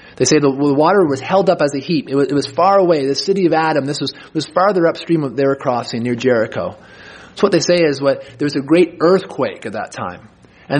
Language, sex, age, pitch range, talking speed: English, male, 30-49, 145-185 Hz, 250 wpm